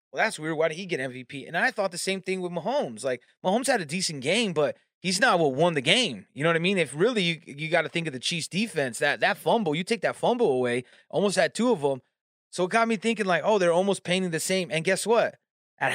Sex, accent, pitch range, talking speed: male, American, 150-190 Hz, 280 wpm